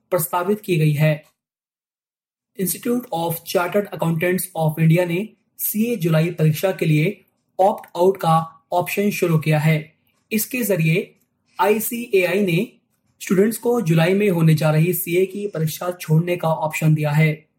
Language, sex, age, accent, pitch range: Hindi, male, 20-39, native, 155-190 Hz